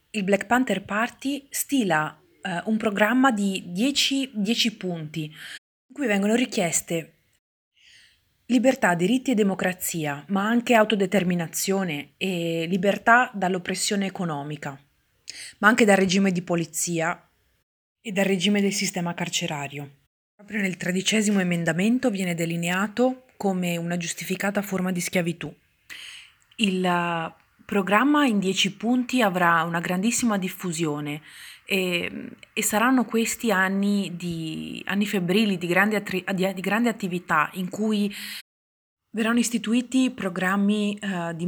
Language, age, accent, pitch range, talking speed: Italian, 30-49, native, 175-215 Hz, 110 wpm